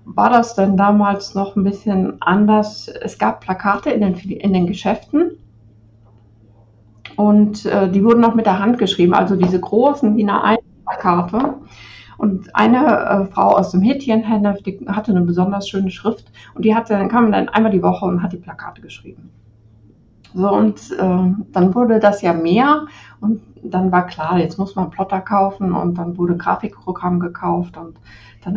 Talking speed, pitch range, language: 170 wpm, 175-210 Hz, German